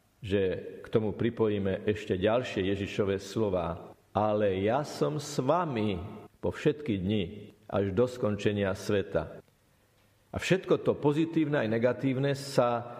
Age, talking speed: 50-69, 125 wpm